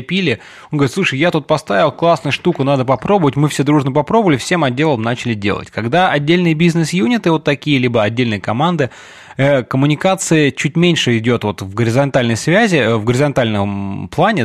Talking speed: 160 wpm